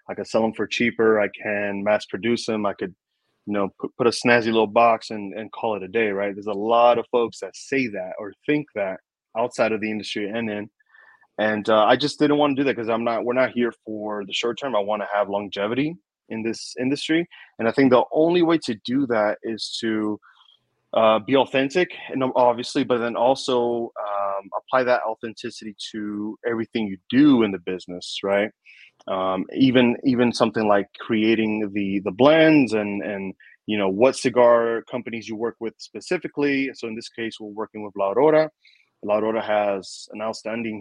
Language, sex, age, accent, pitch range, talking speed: English, male, 20-39, American, 105-125 Hz, 205 wpm